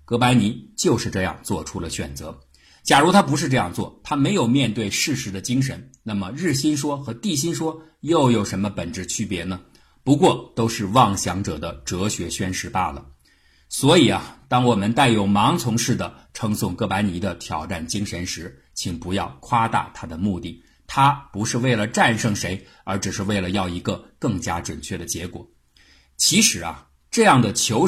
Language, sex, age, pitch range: Chinese, male, 50-69, 90-125 Hz